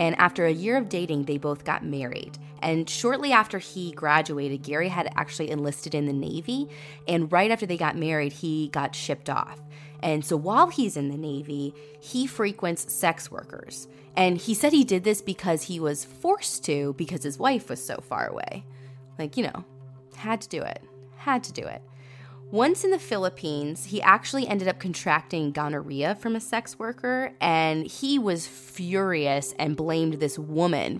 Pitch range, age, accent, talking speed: 145-205 Hz, 20-39, American, 180 wpm